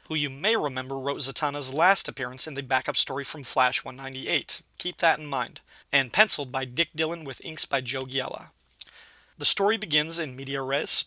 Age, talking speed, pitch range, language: 30-49, 190 wpm, 135-160 Hz, English